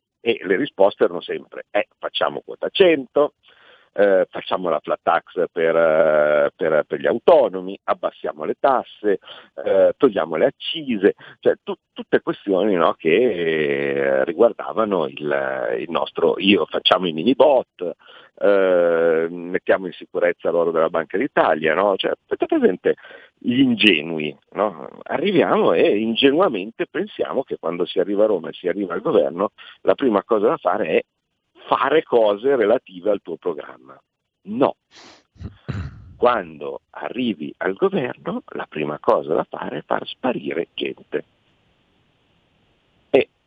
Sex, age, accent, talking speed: male, 50-69, native, 135 wpm